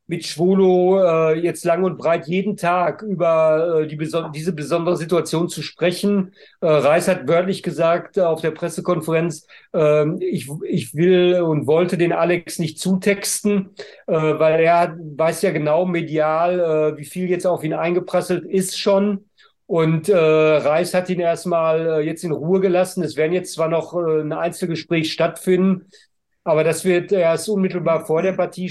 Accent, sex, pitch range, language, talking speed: German, male, 160-185 Hz, German, 170 wpm